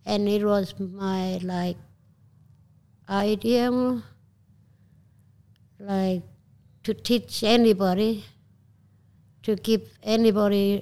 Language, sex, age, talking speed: English, female, 60-79, 70 wpm